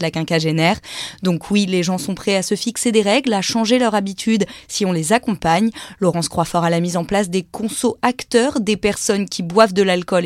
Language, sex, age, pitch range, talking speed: French, female, 20-39, 180-230 Hz, 220 wpm